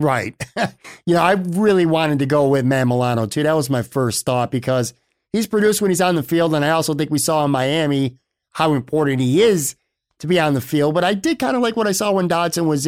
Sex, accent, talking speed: male, American, 250 wpm